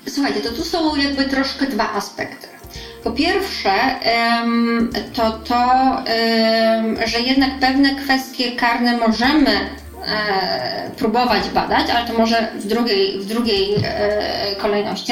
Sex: female